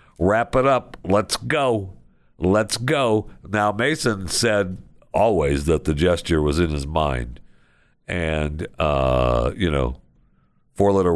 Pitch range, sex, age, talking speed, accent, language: 75-100 Hz, male, 60-79, 125 wpm, American, English